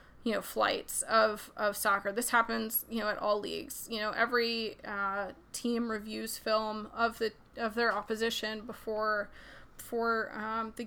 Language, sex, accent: English, female, American